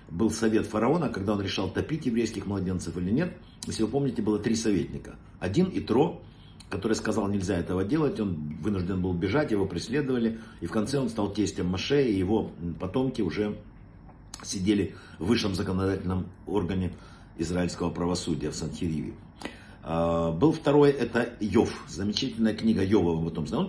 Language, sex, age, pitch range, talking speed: Russian, male, 50-69, 95-130 Hz, 145 wpm